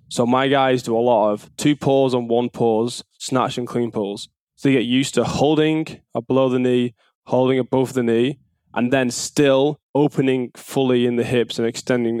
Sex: male